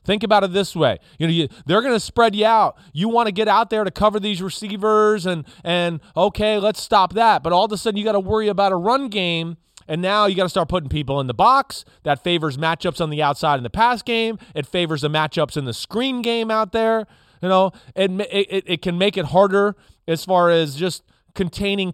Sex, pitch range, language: male, 155-210 Hz, English